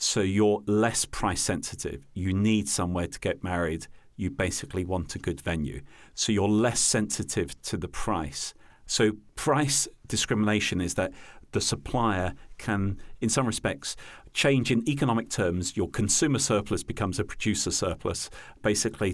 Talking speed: 145 wpm